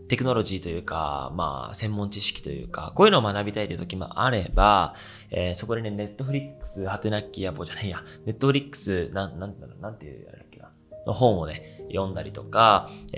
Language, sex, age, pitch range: Japanese, male, 20-39, 90-130 Hz